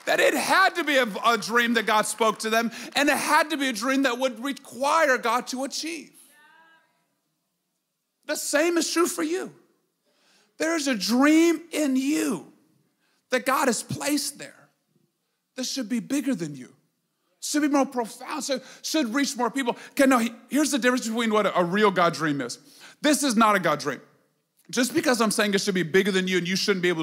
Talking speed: 195 wpm